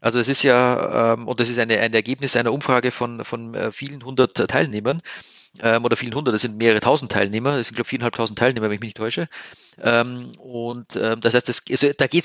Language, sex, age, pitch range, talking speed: German, male, 30-49, 120-140 Hz, 220 wpm